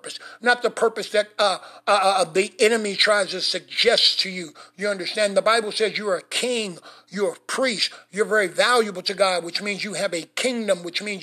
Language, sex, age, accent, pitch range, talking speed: English, male, 50-69, American, 195-225 Hz, 215 wpm